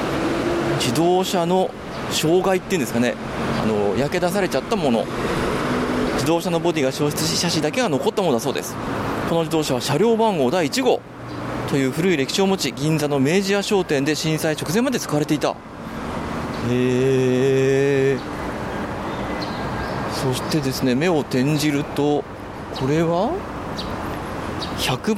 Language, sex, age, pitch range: Japanese, male, 40-59, 135-190 Hz